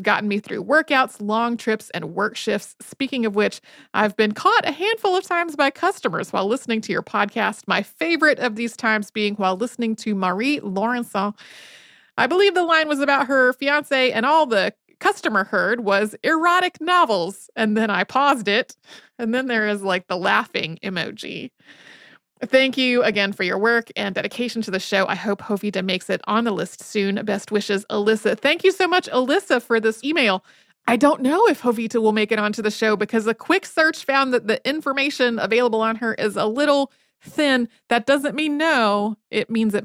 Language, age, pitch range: English, 30-49, 200-270 Hz